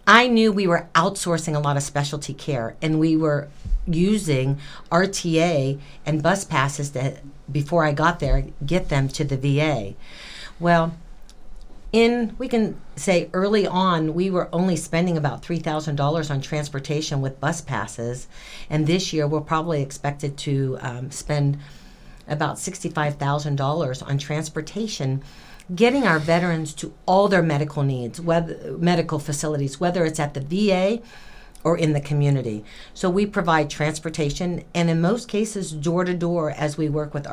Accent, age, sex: American, 50-69, female